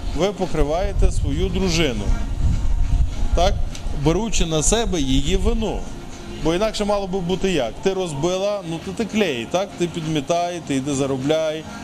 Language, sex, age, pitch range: Ukrainian, male, 20-39, 135-175 Hz